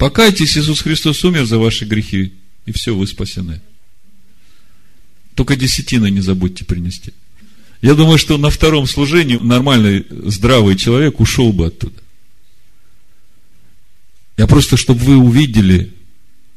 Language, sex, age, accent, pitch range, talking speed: Russian, male, 50-69, native, 100-140 Hz, 120 wpm